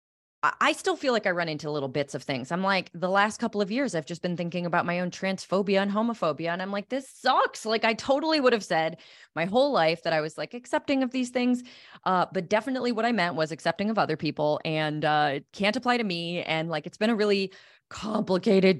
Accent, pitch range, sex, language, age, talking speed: American, 165-230 Hz, female, English, 20-39, 240 wpm